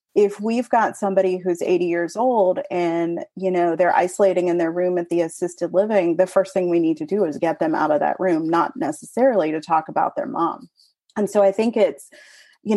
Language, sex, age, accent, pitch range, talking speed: English, female, 30-49, American, 175-220 Hz, 220 wpm